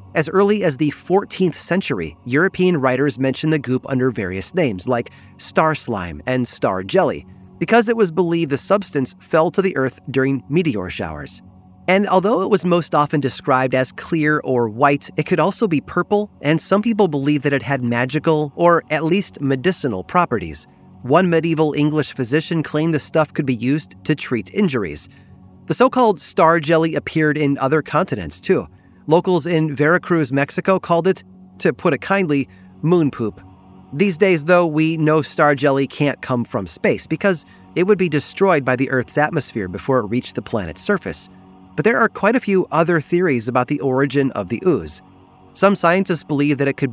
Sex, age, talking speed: male, 30-49, 180 wpm